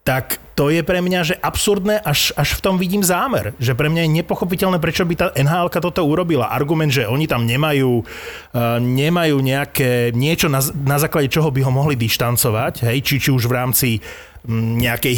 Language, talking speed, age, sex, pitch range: Slovak, 195 wpm, 30-49, male, 120-150 Hz